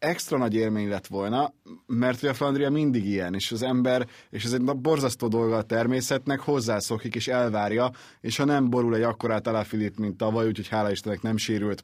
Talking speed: 200 wpm